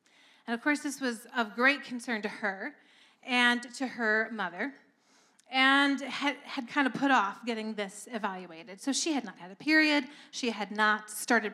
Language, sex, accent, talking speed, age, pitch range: English, female, American, 180 wpm, 40-59, 210-260 Hz